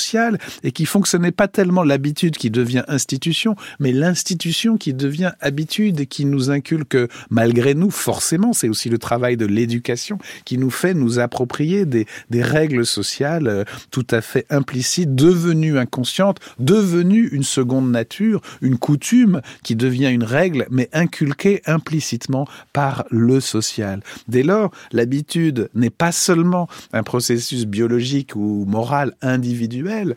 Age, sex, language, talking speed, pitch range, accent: 50-69, male, French, 145 wpm, 120-170 Hz, French